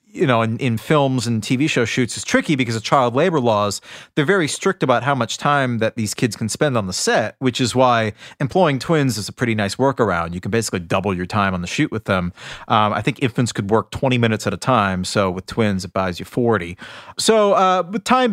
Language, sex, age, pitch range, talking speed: English, male, 30-49, 110-165 Hz, 240 wpm